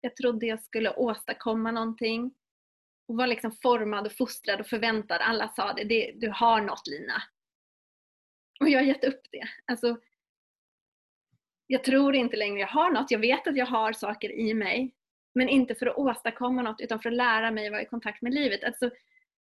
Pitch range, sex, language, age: 225-270 Hz, female, English, 30-49